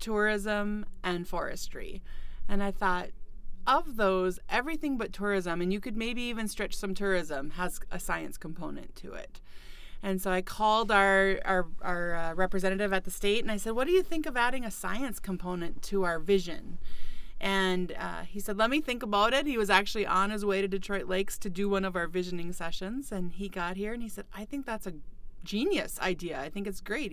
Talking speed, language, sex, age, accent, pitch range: 210 wpm, English, female, 30-49, American, 180-215 Hz